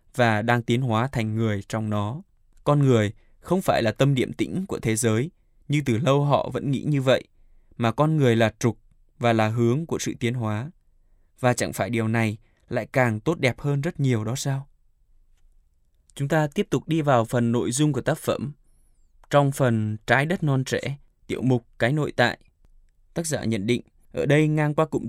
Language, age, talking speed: Vietnamese, 20-39, 205 wpm